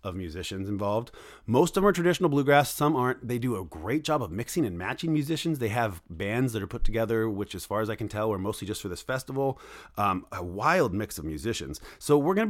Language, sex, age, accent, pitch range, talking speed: English, male, 30-49, American, 100-140 Hz, 245 wpm